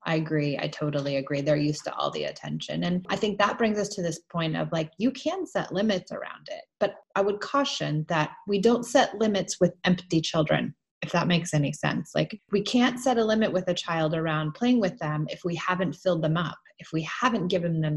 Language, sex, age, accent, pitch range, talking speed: English, female, 30-49, American, 155-215 Hz, 230 wpm